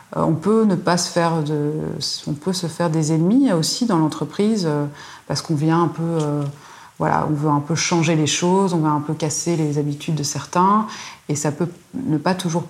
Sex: female